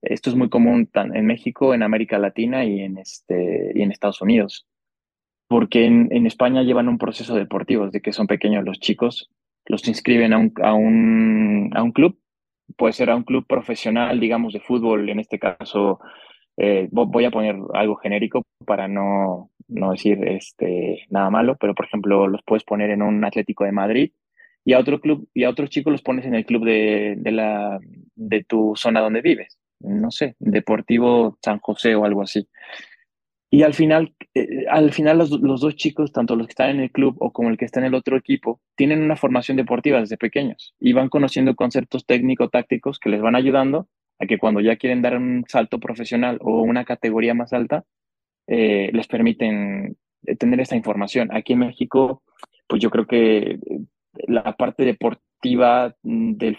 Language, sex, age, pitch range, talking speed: Spanish, male, 20-39, 110-135 Hz, 185 wpm